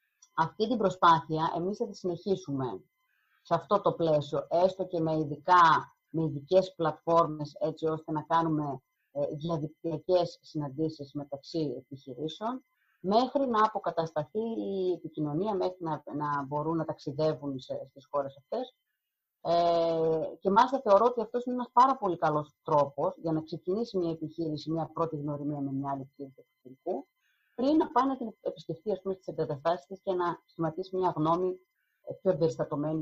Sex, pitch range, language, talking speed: female, 150-195 Hz, Greek, 150 wpm